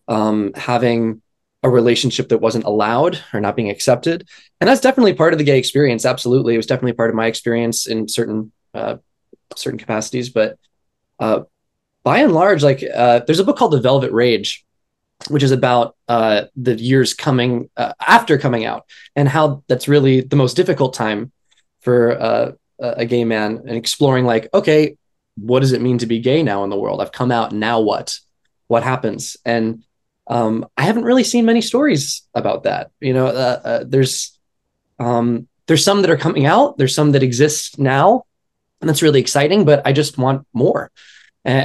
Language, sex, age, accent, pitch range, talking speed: English, male, 20-39, American, 115-140 Hz, 185 wpm